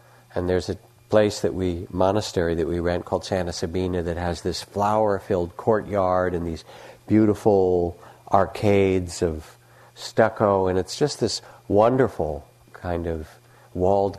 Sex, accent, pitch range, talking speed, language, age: male, American, 85-115 Hz, 140 wpm, English, 50-69